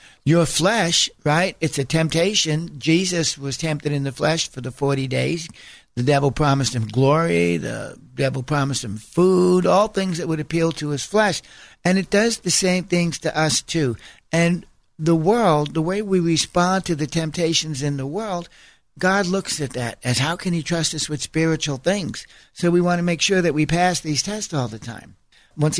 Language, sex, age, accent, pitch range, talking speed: English, male, 60-79, American, 140-175 Hz, 195 wpm